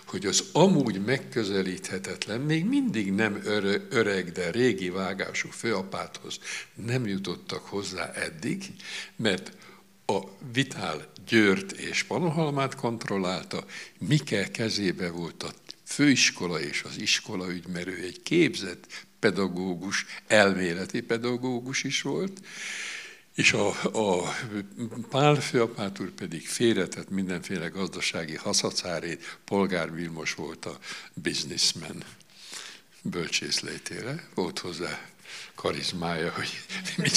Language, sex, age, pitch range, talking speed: Hungarian, male, 60-79, 95-130 Hz, 95 wpm